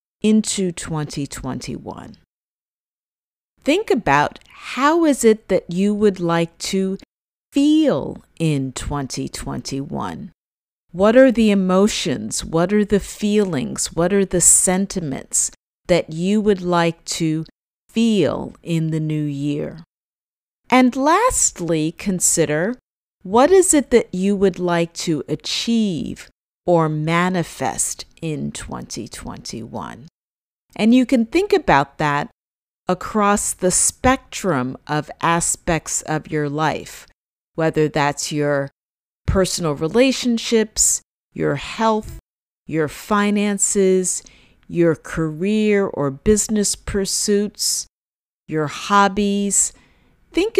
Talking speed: 100 wpm